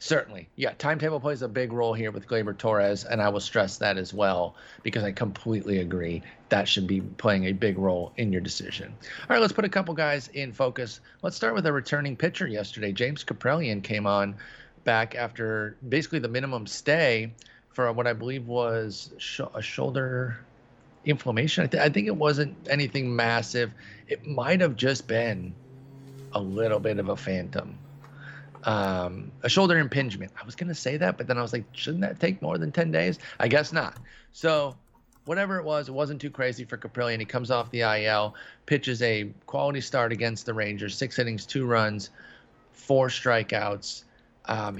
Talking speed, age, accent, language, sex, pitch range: 185 wpm, 30-49, American, English, male, 110-145 Hz